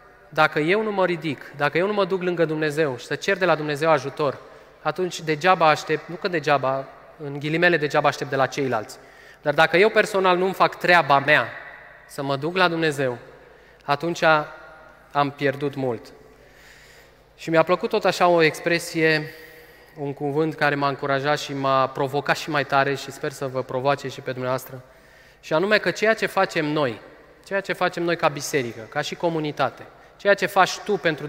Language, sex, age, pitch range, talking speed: Romanian, male, 20-39, 140-170 Hz, 185 wpm